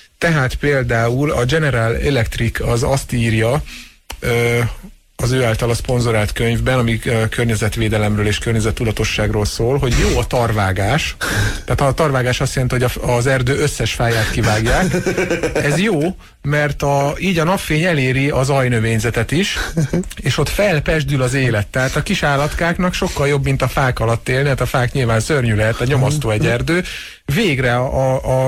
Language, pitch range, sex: Hungarian, 115-140 Hz, male